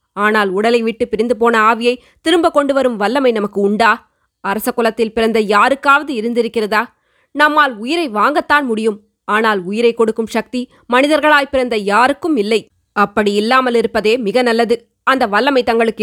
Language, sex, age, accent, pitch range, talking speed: Tamil, female, 20-39, native, 220-255 Hz, 140 wpm